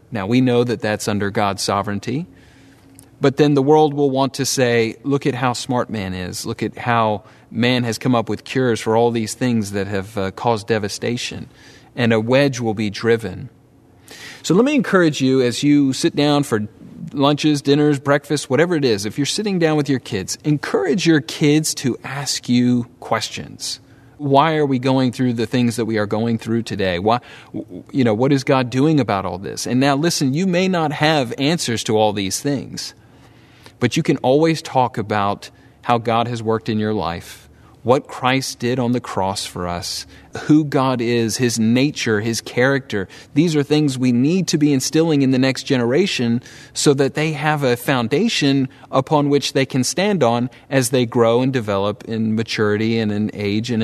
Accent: American